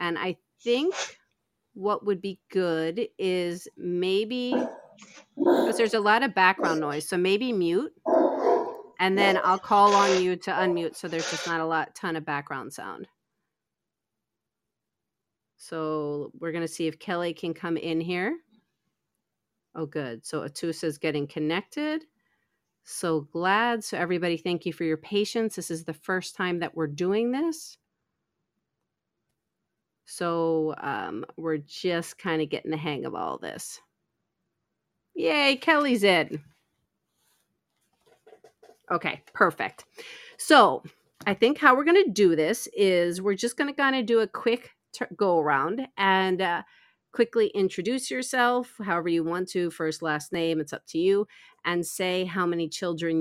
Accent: American